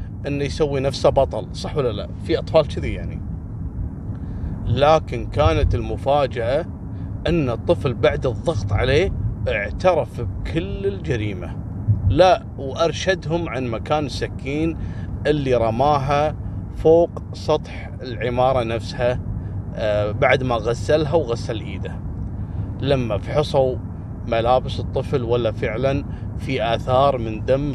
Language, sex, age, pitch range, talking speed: Arabic, male, 40-59, 100-135 Hz, 105 wpm